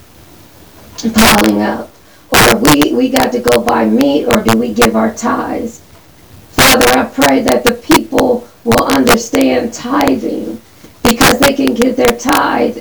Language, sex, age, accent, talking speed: English, female, 40-59, American, 145 wpm